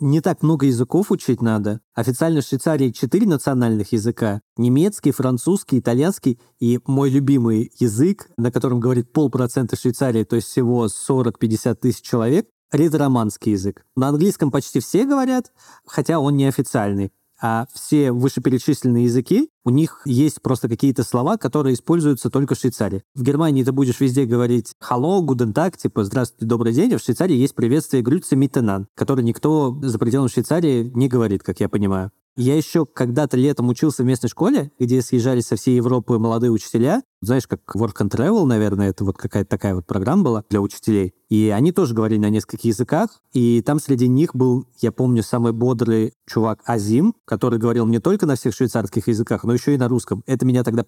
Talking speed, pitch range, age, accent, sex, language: 170 wpm, 115-135 Hz, 20-39, native, male, Russian